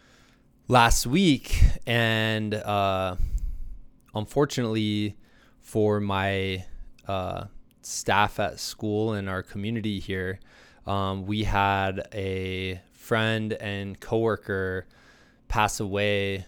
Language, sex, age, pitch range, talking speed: English, male, 20-39, 95-105 Hz, 85 wpm